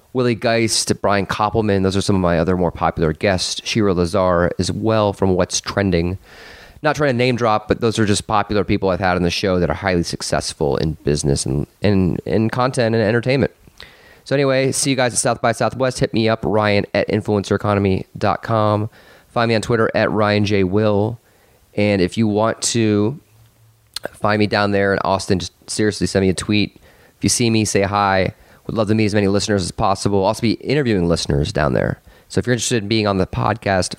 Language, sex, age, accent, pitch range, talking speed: English, male, 30-49, American, 95-110 Hz, 210 wpm